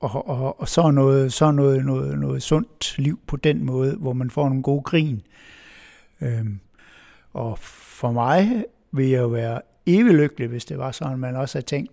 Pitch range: 125-145 Hz